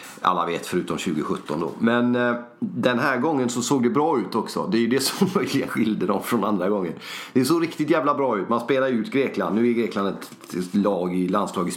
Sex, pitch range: male, 100-130 Hz